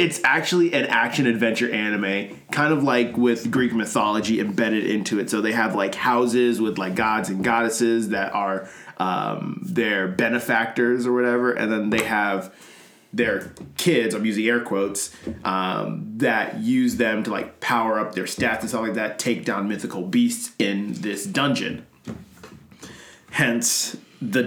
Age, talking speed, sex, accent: 20-39, 155 wpm, male, American